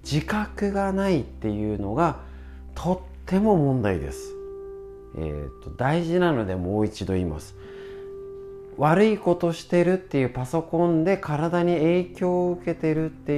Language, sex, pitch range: Japanese, male, 105-175 Hz